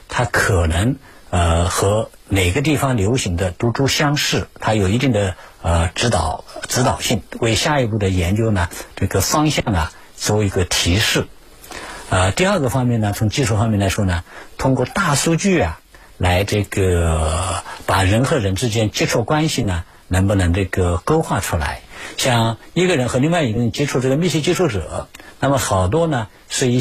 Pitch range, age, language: 95-135 Hz, 60-79, Chinese